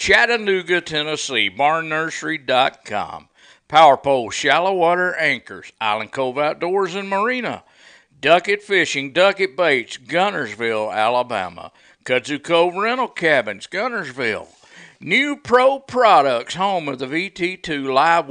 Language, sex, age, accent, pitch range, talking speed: English, male, 50-69, American, 140-195 Hz, 100 wpm